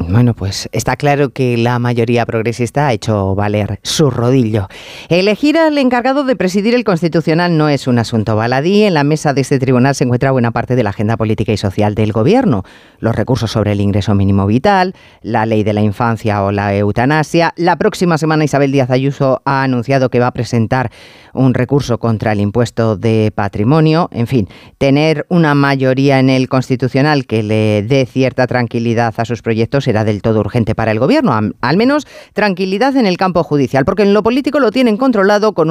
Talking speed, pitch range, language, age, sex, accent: 195 wpm, 115-160 Hz, Spanish, 30-49, female, Spanish